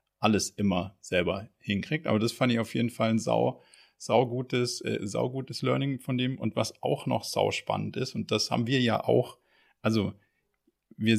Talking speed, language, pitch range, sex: 180 wpm, German, 120-155 Hz, male